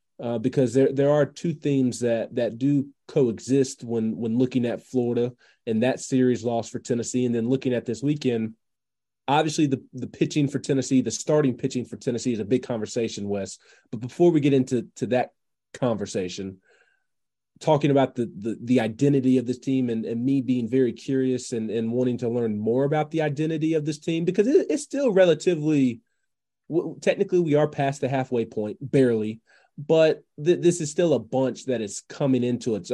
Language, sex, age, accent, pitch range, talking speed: English, male, 30-49, American, 120-150 Hz, 190 wpm